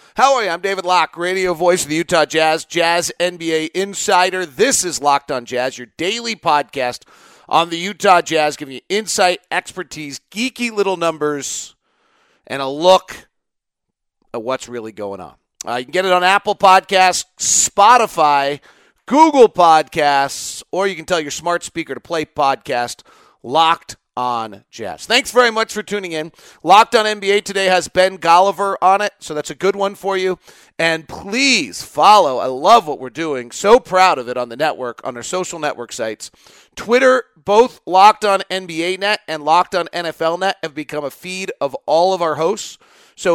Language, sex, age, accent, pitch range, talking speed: English, male, 40-59, American, 150-195 Hz, 180 wpm